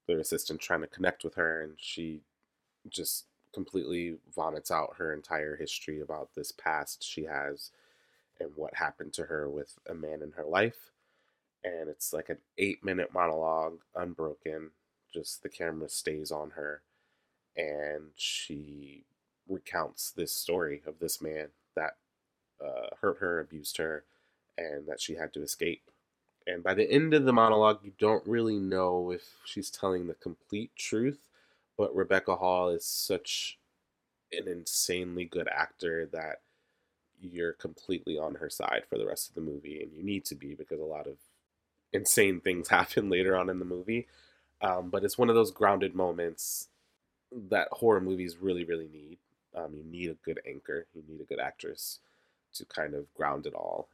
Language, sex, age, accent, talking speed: English, male, 20-39, American, 170 wpm